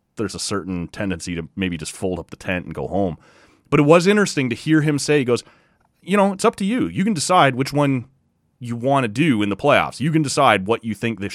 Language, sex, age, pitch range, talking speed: English, male, 30-49, 105-145 Hz, 260 wpm